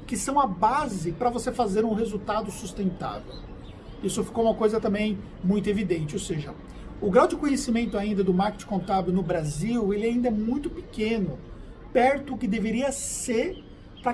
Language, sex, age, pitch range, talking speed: Portuguese, male, 50-69, 205-260 Hz, 170 wpm